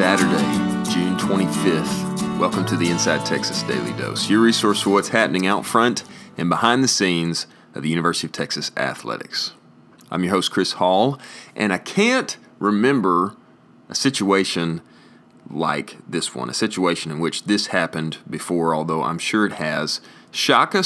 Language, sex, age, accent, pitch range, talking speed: English, male, 30-49, American, 80-100 Hz, 155 wpm